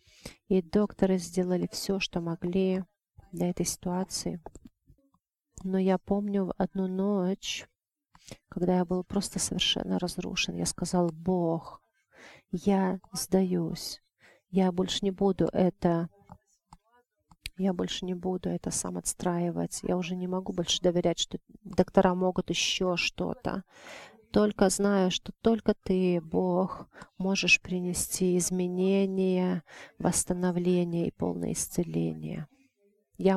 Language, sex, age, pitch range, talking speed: English, female, 30-49, 175-195 Hz, 110 wpm